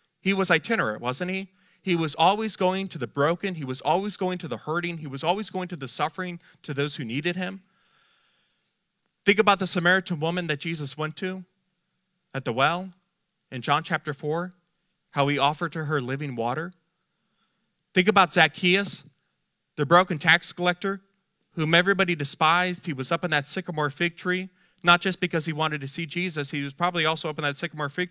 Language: English